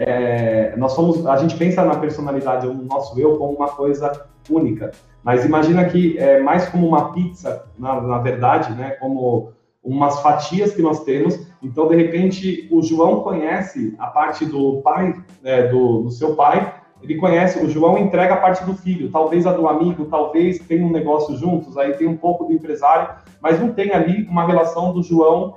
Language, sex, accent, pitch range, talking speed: Portuguese, male, Brazilian, 145-175 Hz, 190 wpm